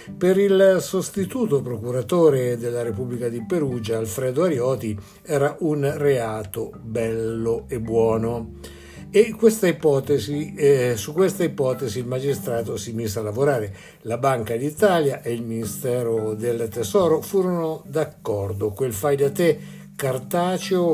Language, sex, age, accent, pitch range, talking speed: Italian, male, 60-79, native, 115-150 Hz, 120 wpm